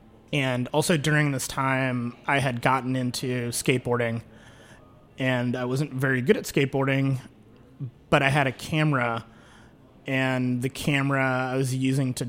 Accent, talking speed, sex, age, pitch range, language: American, 140 wpm, male, 30-49, 120-140 Hz, English